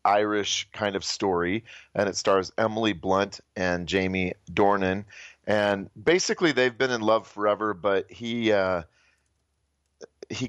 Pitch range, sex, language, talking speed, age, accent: 90-105 Hz, male, English, 130 wpm, 30-49, American